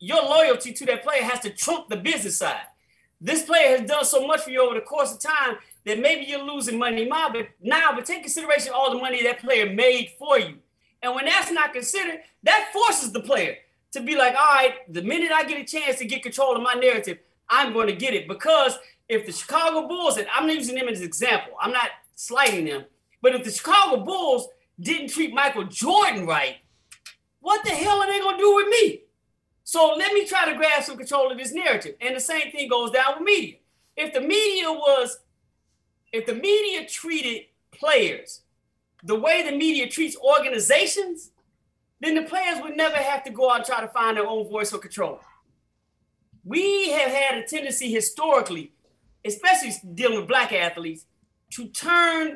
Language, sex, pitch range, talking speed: English, male, 245-325 Hz, 200 wpm